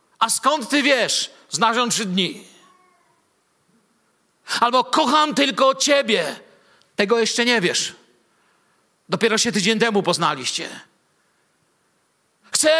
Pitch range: 195-260 Hz